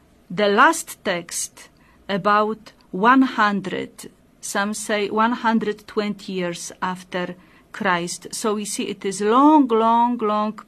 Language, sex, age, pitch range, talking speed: English, female, 40-59, 200-255 Hz, 110 wpm